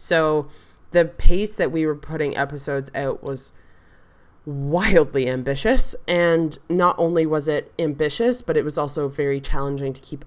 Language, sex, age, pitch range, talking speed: English, female, 20-39, 135-160 Hz, 150 wpm